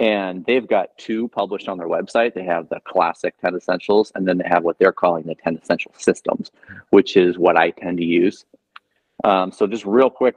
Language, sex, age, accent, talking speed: English, male, 30-49, American, 215 wpm